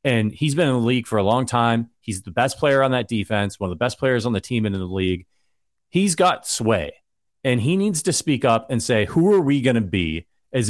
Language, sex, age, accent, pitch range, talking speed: English, male, 30-49, American, 110-155 Hz, 265 wpm